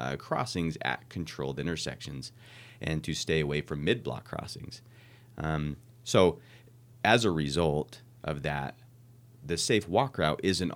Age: 30-49